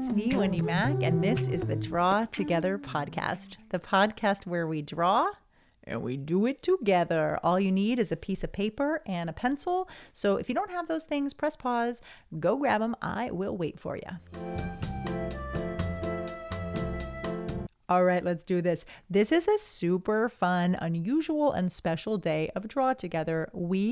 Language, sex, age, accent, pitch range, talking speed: English, female, 30-49, American, 175-260 Hz, 170 wpm